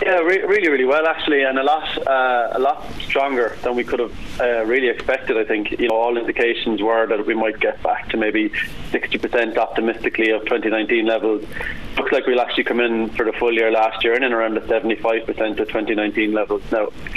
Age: 20-39